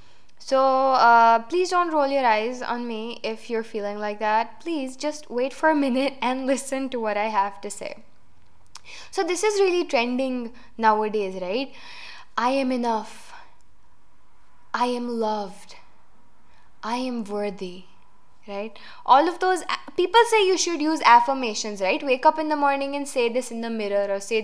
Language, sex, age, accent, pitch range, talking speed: English, female, 10-29, Indian, 220-340 Hz, 165 wpm